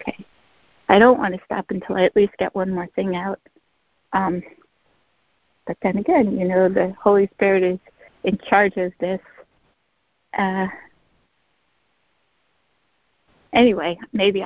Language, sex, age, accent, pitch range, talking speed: English, female, 50-69, American, 180-215 Hz, 130 wpm